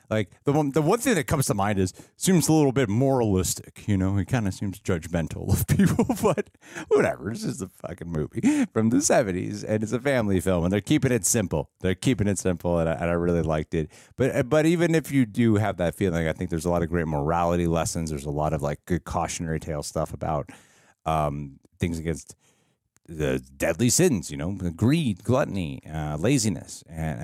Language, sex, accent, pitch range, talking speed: English, male, American, 85-110 Hz, 220 wpm